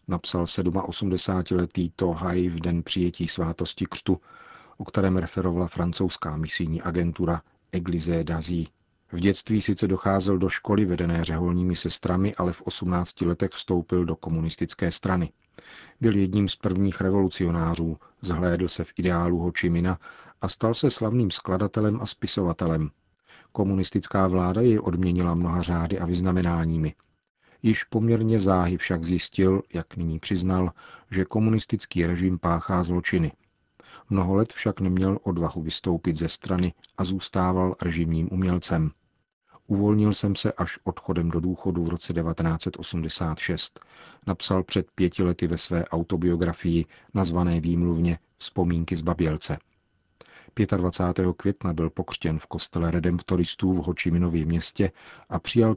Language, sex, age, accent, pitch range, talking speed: Czech, male, 40-59, native, 85-95 Hz, 125 wpm